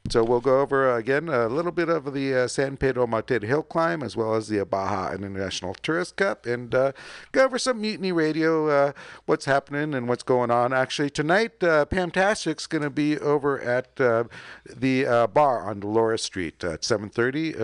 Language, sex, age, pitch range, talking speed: English, male, 50-69, 105-150 Hz, 195 wpm